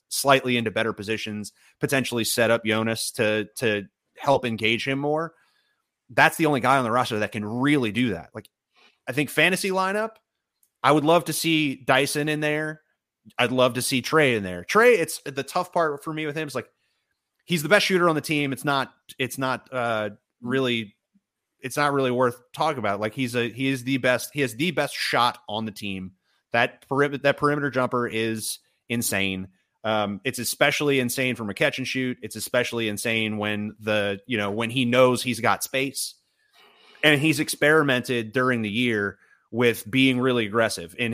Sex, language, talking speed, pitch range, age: male, English, 190 wpm, 110-140 Hz, 30-49